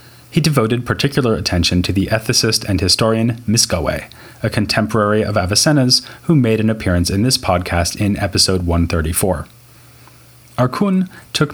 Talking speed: 135 wpm